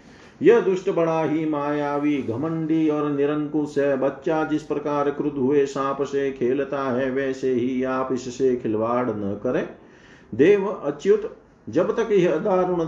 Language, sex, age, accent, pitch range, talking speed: Hindi, male, 50-69, native, 135-160 Hz, 135 wpm